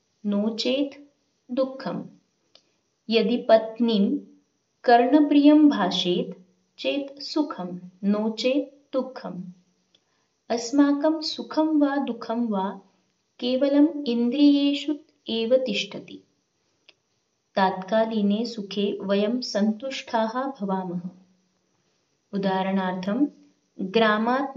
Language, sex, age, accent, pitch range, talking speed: Marathi, female, 20-39, native, 195-270 Hz, 40 wpm